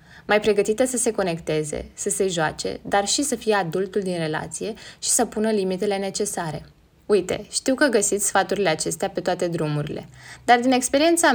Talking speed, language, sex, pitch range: 170 wpm, Romanian, female, 180-225 Hz